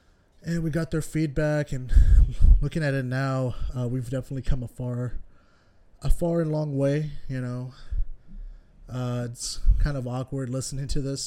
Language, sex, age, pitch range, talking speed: English, male, 30-49, 115-135 Hz, 165 wpm